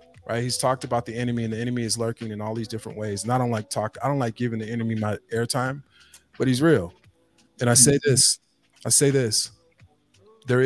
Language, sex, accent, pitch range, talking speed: English, male, American, 110-130 Hz, 225 wpm